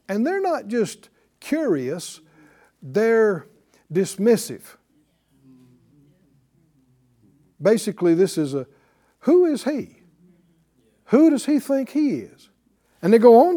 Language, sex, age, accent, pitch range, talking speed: English, male, 60-79, American, 180-285 Hz, 105 wpm